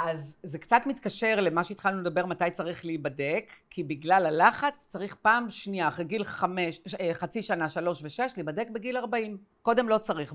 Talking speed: 175 wpm